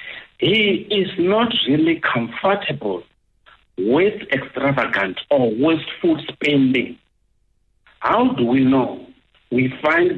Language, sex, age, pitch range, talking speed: English, male, 60-79, 115-195 Hz, 95 wpm